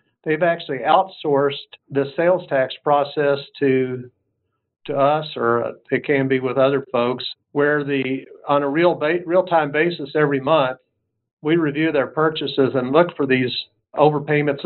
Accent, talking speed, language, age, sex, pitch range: American, 150 wpm, English, 50-69, male, 130-155 Hz